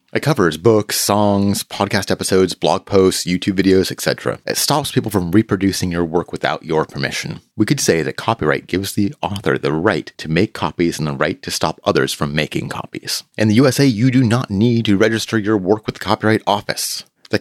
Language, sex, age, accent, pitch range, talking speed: English, male, 30-49, American, 90-115 Hz, 205 wpm